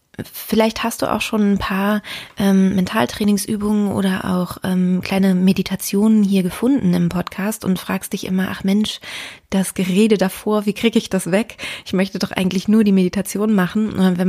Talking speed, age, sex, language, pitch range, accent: 170 wpm, 20-39, female, German, 185-205 Hz, German